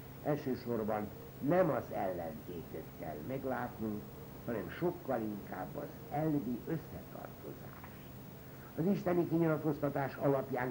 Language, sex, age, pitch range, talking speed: Hungarian, male, 60-79, 120-165 Hz, 90 wpm